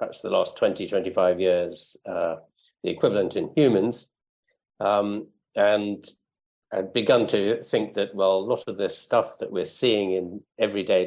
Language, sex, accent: English, male, British